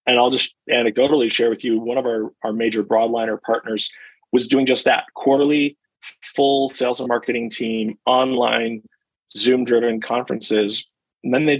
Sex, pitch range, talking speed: male, 110-130 Hz, 155 wpm